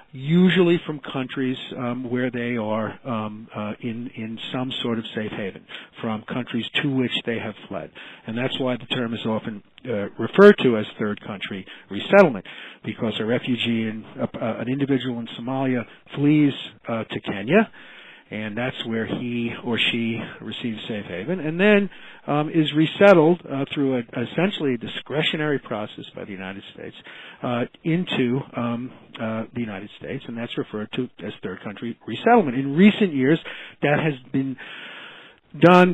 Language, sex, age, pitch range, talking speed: English, male, 50-69, 120-160 Hz, 160 wpm